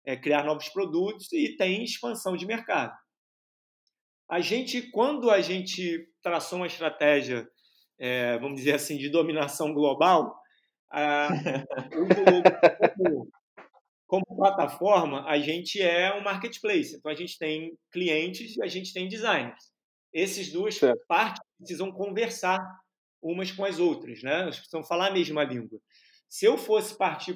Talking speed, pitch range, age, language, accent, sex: 135 wpm, 155-205 Hz, 20-39, Portuguese, Brazilian, male